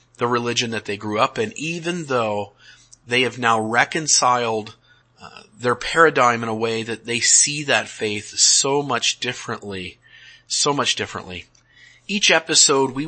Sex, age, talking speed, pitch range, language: male, 30-49, 150 wpm, 120-150 Hz, English